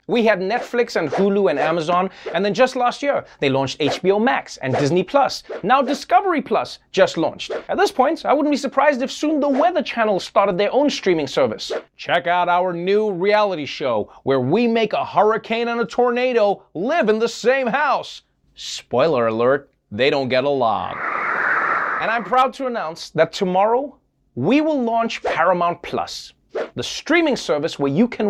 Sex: male